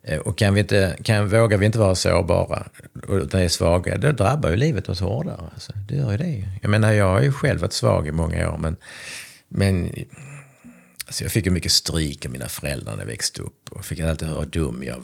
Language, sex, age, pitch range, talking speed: Swedish, male, 50-69, 85-115 Hz, 225 wpm